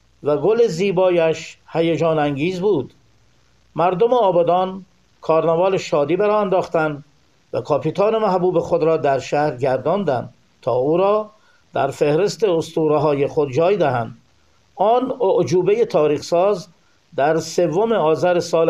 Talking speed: 120 wpm